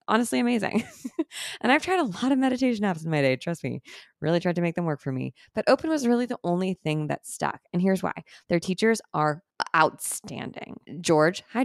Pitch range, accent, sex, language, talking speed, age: 155-240 Hz, American, female, English, 210 wpm, 20-39